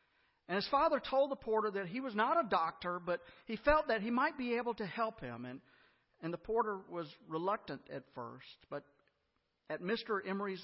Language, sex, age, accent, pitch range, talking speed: English, male, 50-69, American, 155-225 Hz, 195 wpm